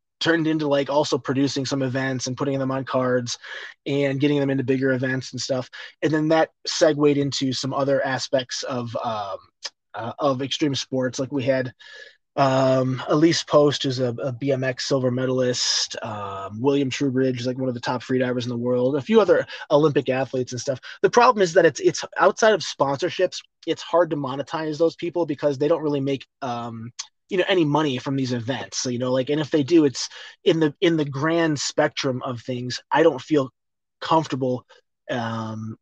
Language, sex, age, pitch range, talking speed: English, male, 20-39, 130-155 Hz, 195 wpm